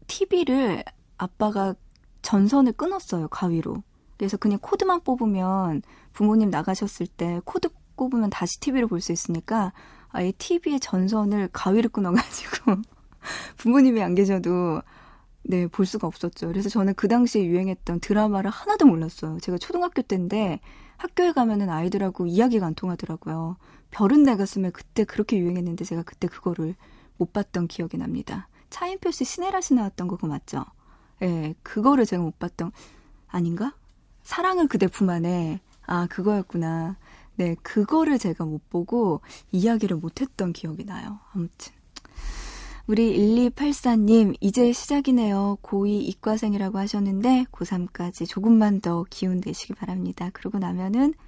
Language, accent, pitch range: Korean, native, 175-230 Hz